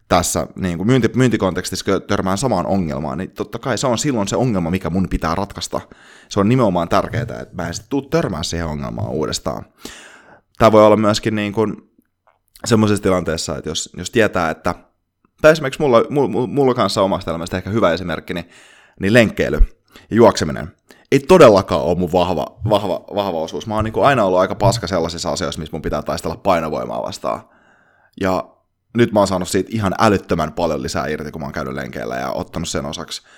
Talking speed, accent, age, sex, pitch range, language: 180 wpm, native, 20-39, male, 85-110 Hz, Finnish